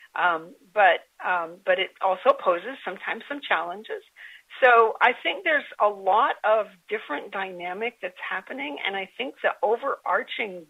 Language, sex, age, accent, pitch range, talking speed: English, female, 50-69, American, 180-230 Hz, 145 wpm